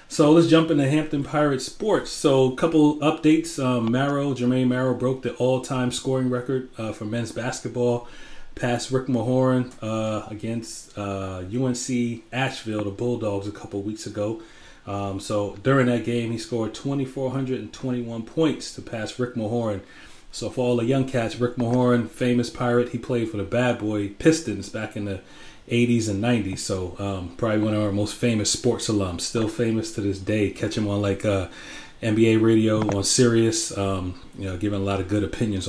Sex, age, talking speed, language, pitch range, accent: male, 30-49, 180 wpm, English, 105-130 Hz, American